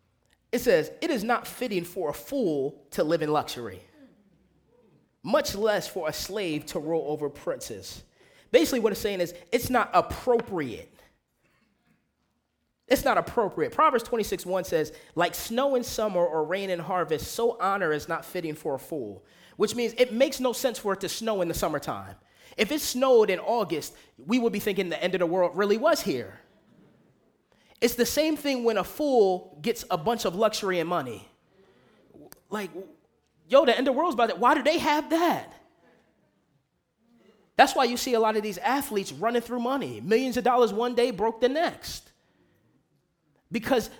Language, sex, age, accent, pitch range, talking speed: English, male, 20-39, American, 190-275 Hz, 180 wpm